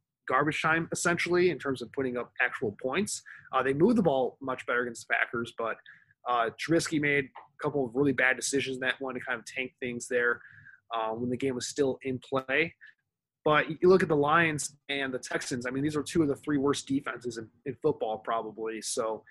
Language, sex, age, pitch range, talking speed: English, male, 20-39, 130-160 Hz, 220 wpm